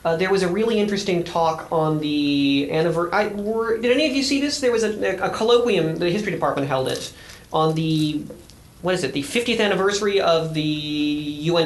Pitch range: 150-185 Hz